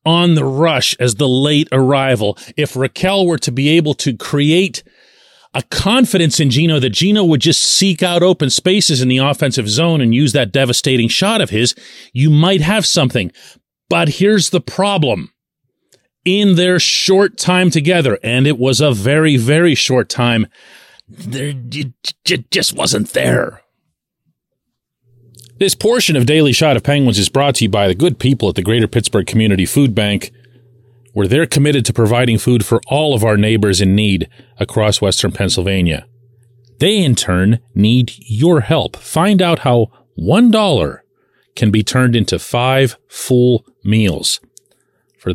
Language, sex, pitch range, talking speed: English, male, 120-165 Hz, 155 wpm